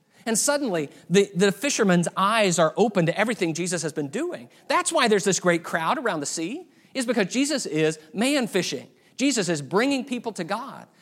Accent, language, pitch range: American, English, 170-225 Hz